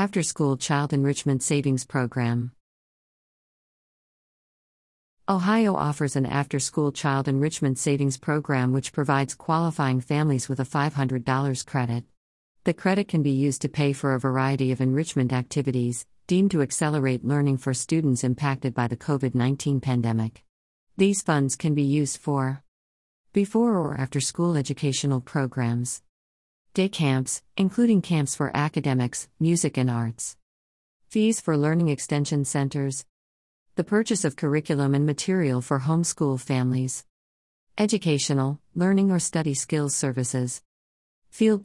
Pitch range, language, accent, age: 125-155 Hz, English, American, 50-69